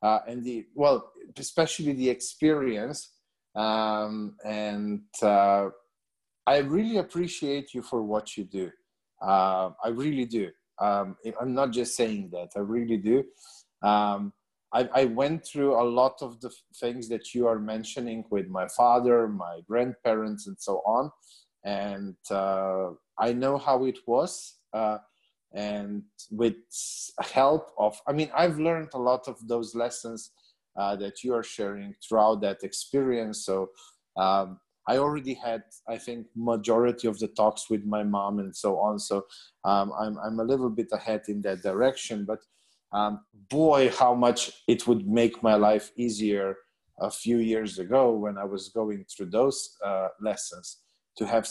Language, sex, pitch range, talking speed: English, male, 100-120 Hz, 160 wpm